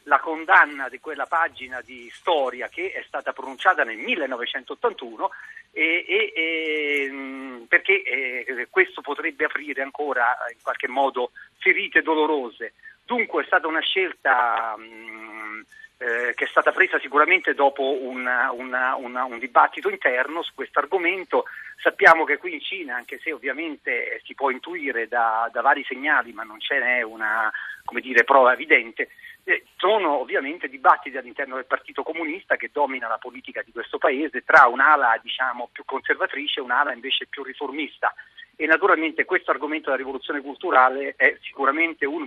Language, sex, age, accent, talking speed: Italian, male, 40-59, native, 155 wpm